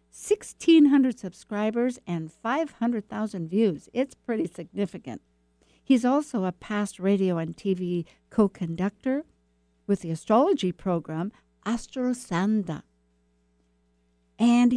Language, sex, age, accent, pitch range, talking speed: English, female, 60-79, American, 155-215 Hz, 90 wpm